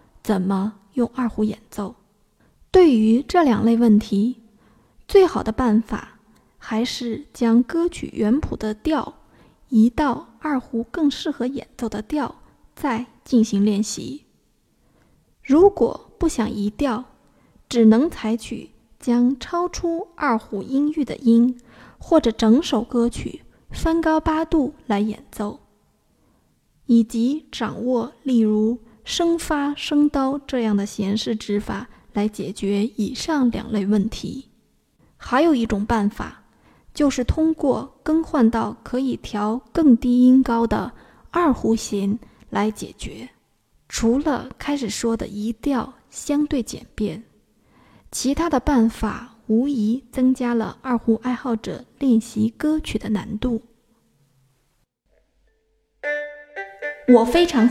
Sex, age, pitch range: female, 20-39, 220-285 Hz